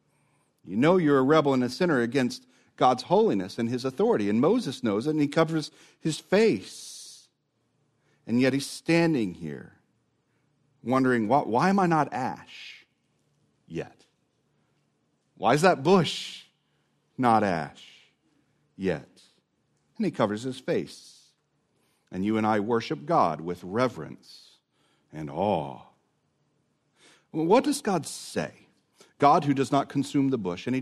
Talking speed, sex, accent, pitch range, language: 140 wpm, male, American, 115-155 Hz, English